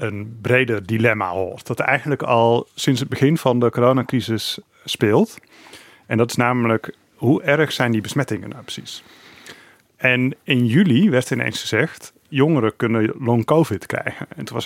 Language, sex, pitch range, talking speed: Dutch, male, 110-130 Hz, 160 wpm